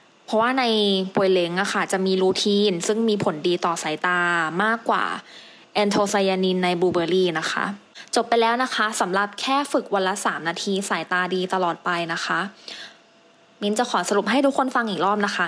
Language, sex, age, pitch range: English, female, 20-39, 185-225 Hz